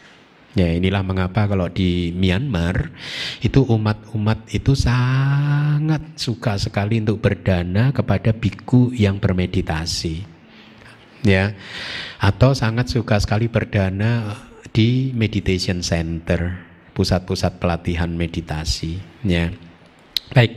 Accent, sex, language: native, male, Indonesian